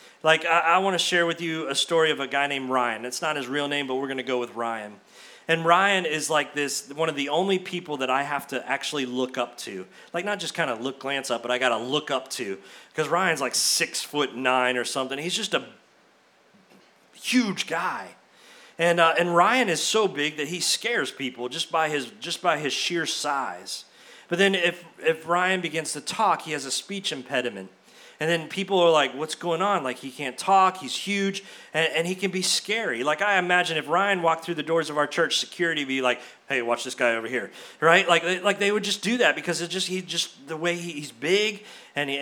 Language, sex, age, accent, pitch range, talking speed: English, male, 40-59, American, 140-185 Hz, 235 wpm